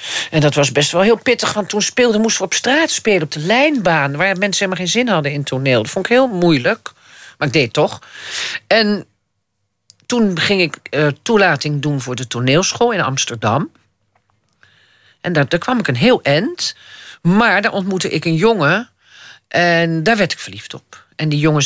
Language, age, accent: Dutch, 40-59, Dutch